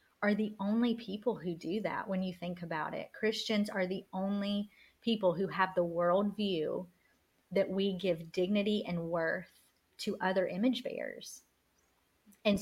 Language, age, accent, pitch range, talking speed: English, 30-49, American, 175-205 Hz, 155 wpm